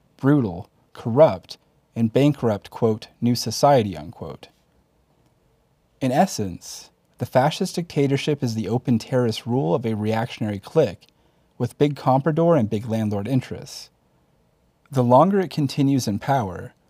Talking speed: 125 wpm